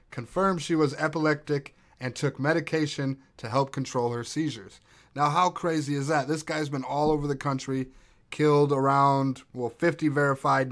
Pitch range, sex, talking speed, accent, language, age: 125-155 Hz, male, 160 wpm, American, English, 30-49